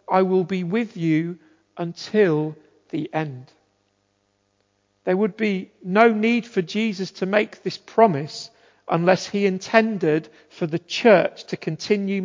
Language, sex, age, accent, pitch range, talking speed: English, male, 40-59, British, 170-225 Hz, 130 wpm